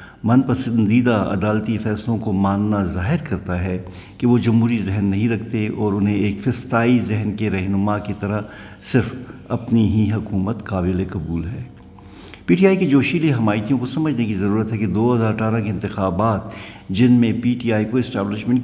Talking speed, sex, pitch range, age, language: 170 wpm, male, 100-120 Hz, 60-79, Urdu